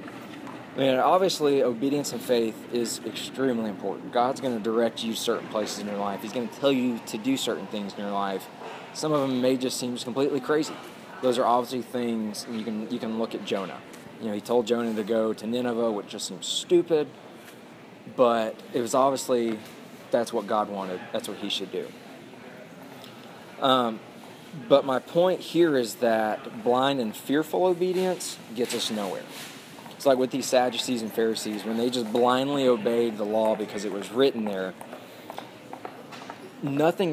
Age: 20-39